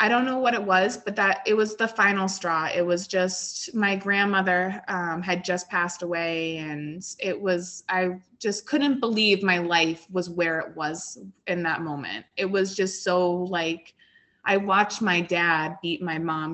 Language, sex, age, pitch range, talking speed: English, female, 20-39, 175-215 Hz, 185 wpm